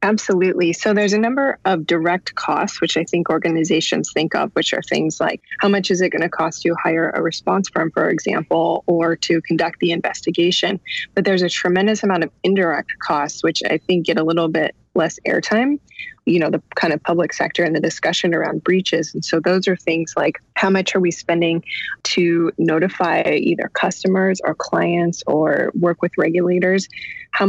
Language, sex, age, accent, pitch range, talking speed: English, female, 20-39, American, 165-190 Hz, 190 wpm